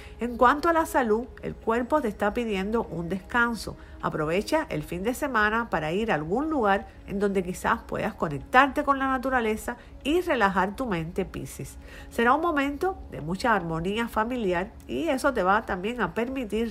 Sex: female